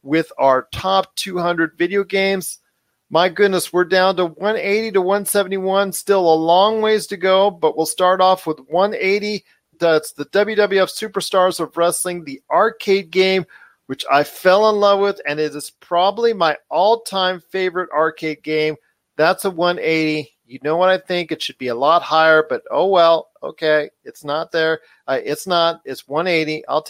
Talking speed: 170 wpm